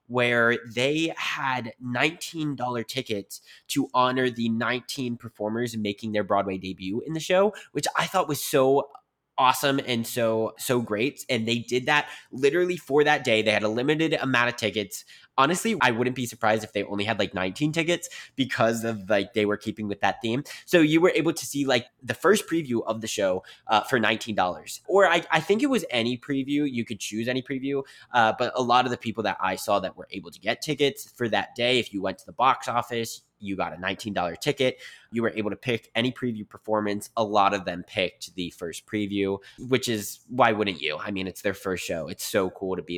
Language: English